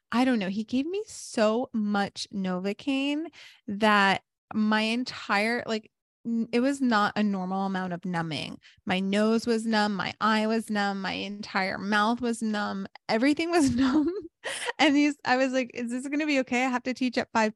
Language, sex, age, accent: English, female, 20-39, American